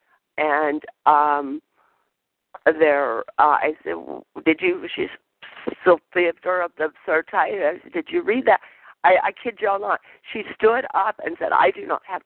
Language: English